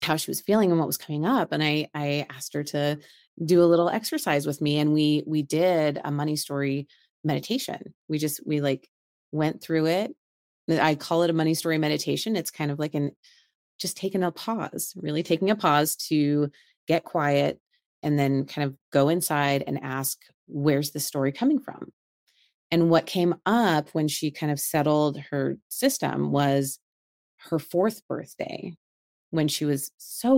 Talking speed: 180 wpm